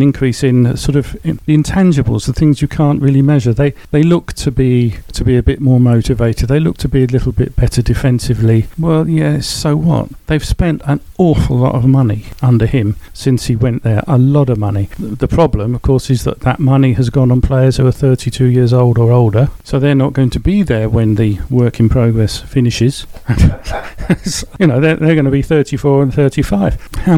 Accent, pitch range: British, 120-140 Hz